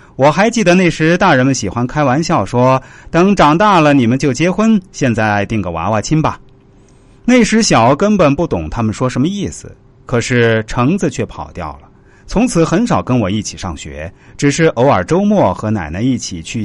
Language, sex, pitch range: Chinese, male, 110-170 Hz